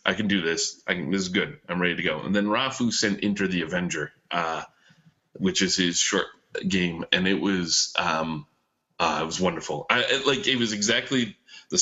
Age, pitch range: 30-49, 85-105 Hz